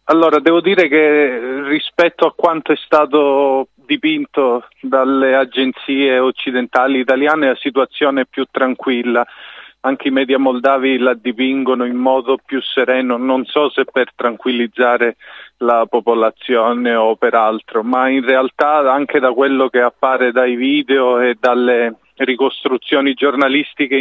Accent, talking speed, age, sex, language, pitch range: native, 130 wpm, 40-59, male, Italian, 125-145 Hz